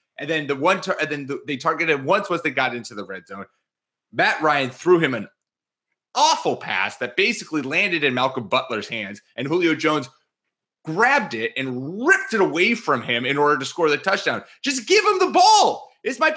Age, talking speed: 30-49, 205 wpm